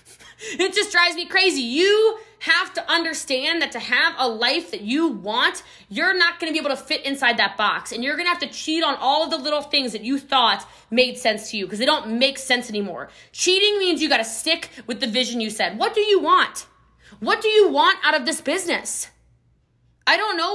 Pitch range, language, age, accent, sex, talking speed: 245-335 Hz, English, 20-39, American, female, 235 wpm